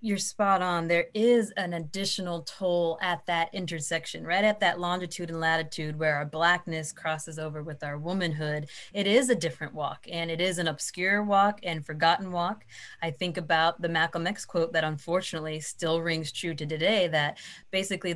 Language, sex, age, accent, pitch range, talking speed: English, female, 30-49, American, 165-200 Hz, 180 wpm